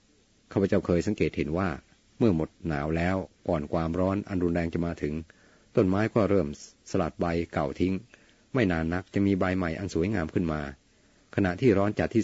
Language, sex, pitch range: Thai, male, 85-100 Hz